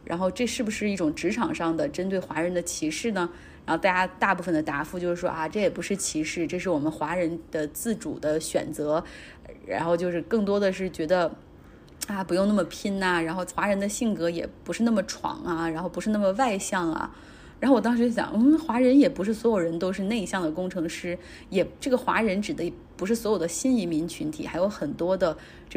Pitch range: 175-230 Hz